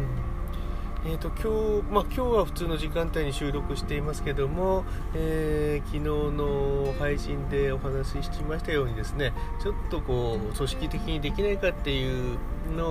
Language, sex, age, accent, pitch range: Japanese, male, 40-59, native, 115-165 Hz